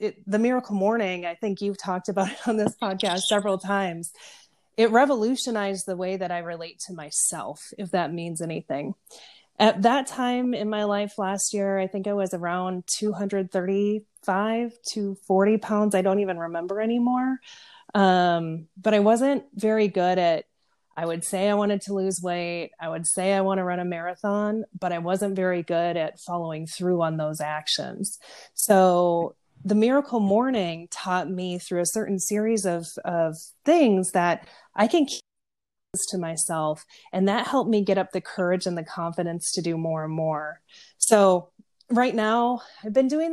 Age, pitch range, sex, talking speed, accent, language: 30-49, 175-210 Hz, female, 175 wpm, American, English